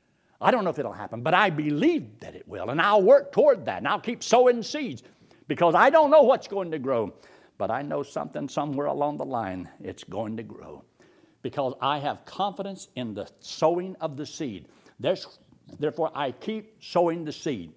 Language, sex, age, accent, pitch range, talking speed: English, male, 60-79, American, 155-250 Hz, 195 wpm